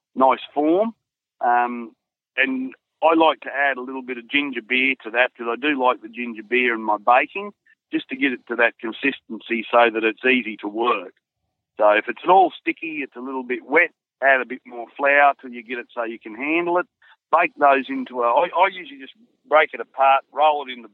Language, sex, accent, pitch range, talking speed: English, male, Australian, 115-145 Hz, 220 wpm